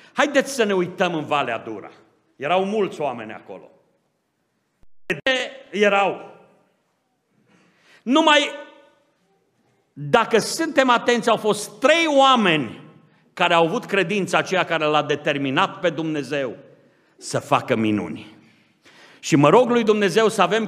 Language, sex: Romanian, male